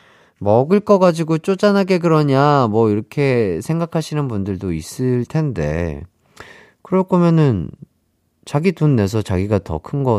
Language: Korean